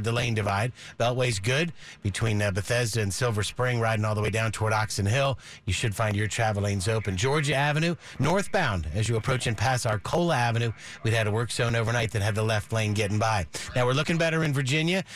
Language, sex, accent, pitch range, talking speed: English, male, American, 110-135 Hz, 220 wpm